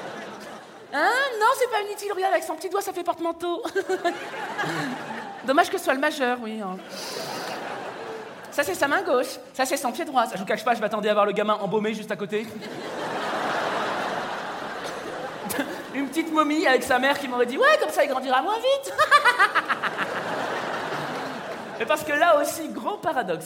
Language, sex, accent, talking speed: French, male, French, 175 wpm